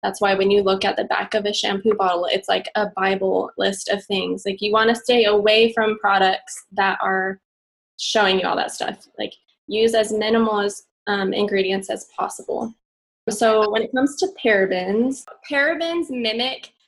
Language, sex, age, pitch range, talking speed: English, female, 10-29, 200-230 Hz, 180 wpm